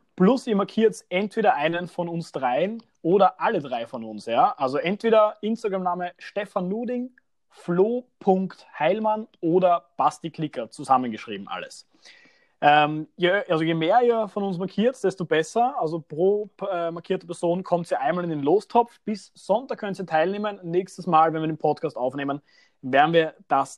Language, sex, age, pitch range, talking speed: German, male, 30-49, 150-190 Hz, 155 wpm